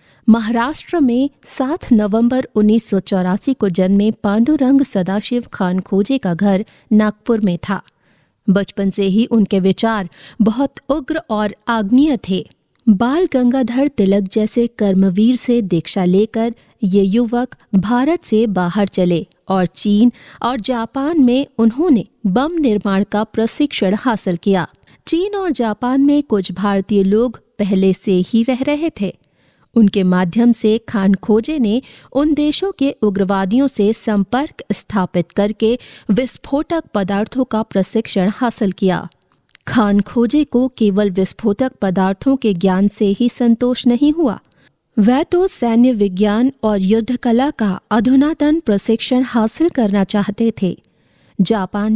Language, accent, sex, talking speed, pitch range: Hindi, native, female, 130 wpm, 200-255 Hz